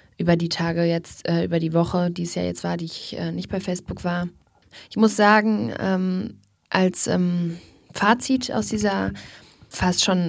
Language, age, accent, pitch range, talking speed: German, 20-39, German, 165-185 Hz, 180 wpm